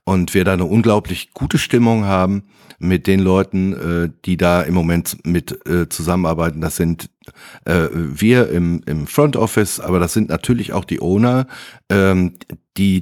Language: German